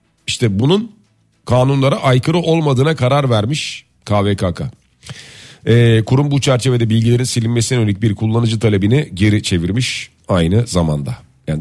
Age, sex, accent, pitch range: 40-59, male, native, 105-135 Hz